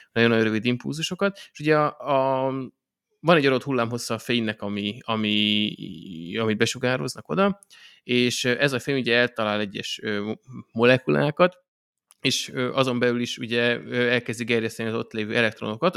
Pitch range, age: 110-130 Hz, 20-39